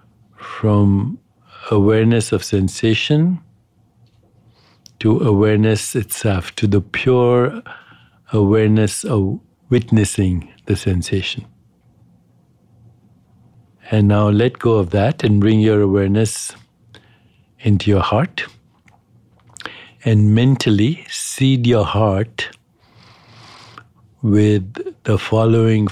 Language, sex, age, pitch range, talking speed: English, male, 60-79, 100-120 Hz, 85 wpm